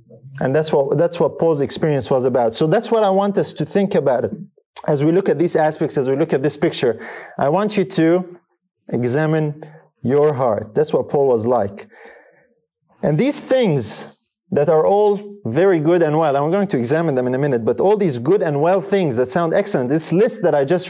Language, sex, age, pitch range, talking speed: English, male, 30-49, 135-195 Hz, 220 wpm